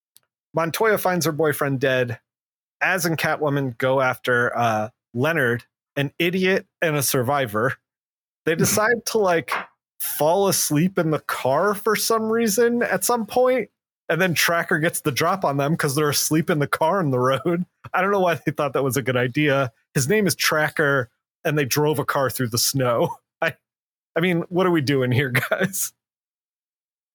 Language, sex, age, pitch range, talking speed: English, male, 30-49, 130-165 Hz, 180 wpm